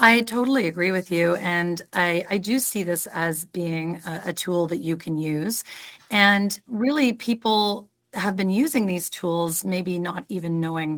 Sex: female